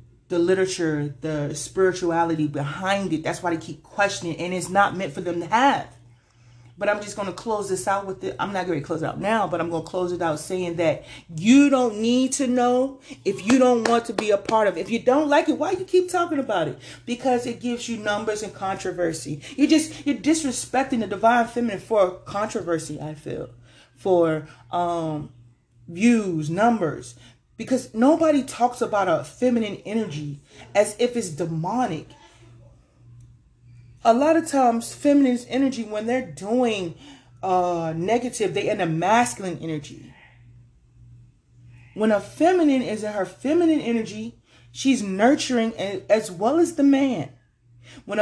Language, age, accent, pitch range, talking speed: English, 30-49, American, 155-245 Hz, 175 wpm